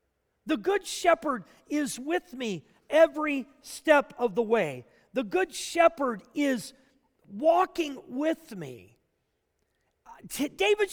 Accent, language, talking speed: American, English, 105 wpm